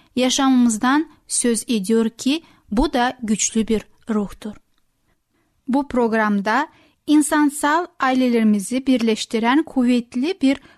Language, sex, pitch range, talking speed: Turkish, female, 225-280 Hz, 90 wpm